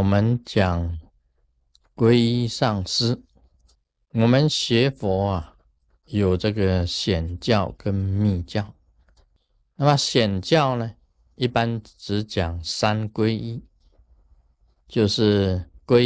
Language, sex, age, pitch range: Chinese, male, 50-69, 80-120 Hz